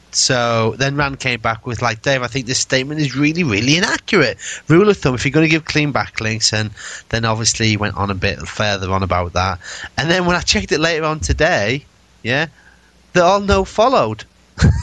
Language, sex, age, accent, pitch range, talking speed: English, male, 30-49, British, 115-180 Hz, 210 wpm